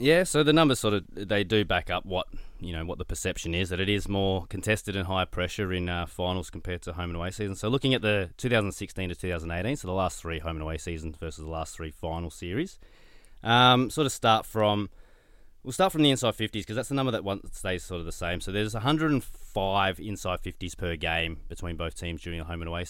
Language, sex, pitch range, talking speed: English, male, 85-110 Hz, 240 wpm